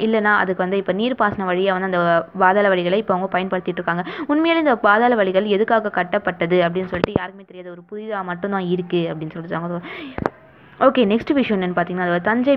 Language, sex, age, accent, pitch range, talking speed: Tamil, female, 20-39, native, 185-235 Hz, 170 wpm